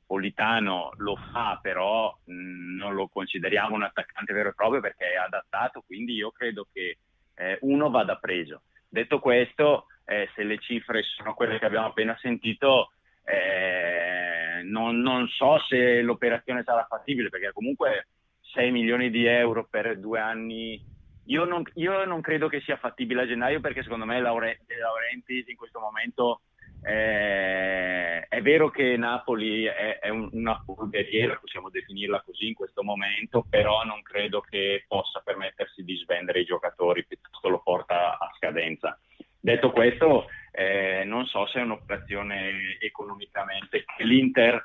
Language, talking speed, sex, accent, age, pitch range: Italian, 150 wpm, male, native, 30-49, 105-125 Hz